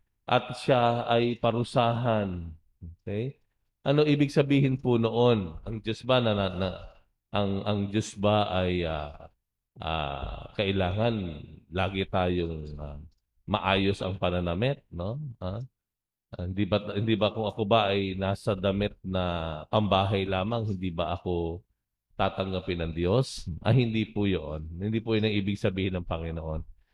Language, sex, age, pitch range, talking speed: English, male, 50-69, 95-125 Hz, 140 wpm